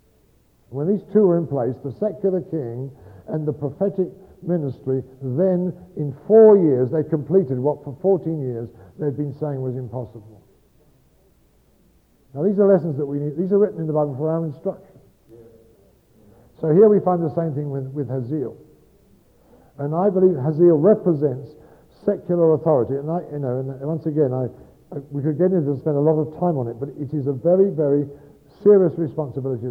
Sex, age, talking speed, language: male, 60-79, 185 wpm, English